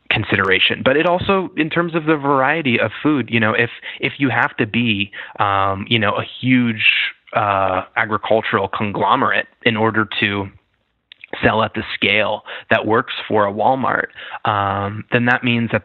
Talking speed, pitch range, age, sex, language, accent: 165 wpm, 100-115 Hz, 20-39, male, English, American